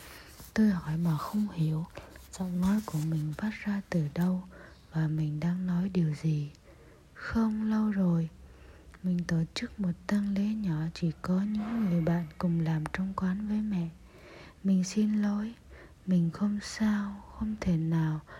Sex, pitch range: female, 160-205 Hz